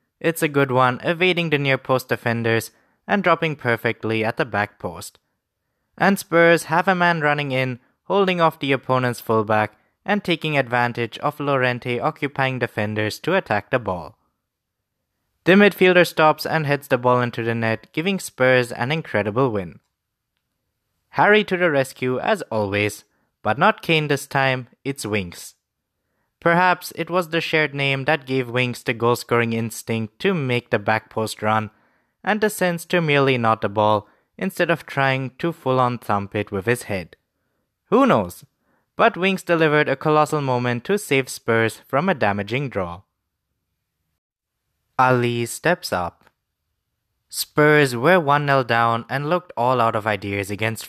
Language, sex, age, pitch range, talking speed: English, male, 20-39, 115-160 Hz, 155 wpm